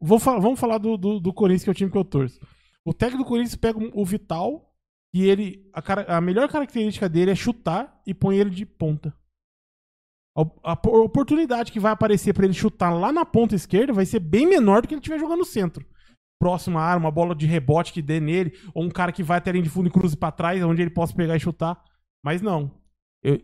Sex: male